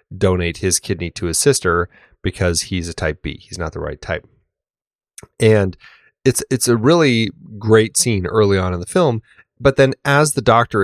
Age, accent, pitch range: 30-49, American, 95-125 Hz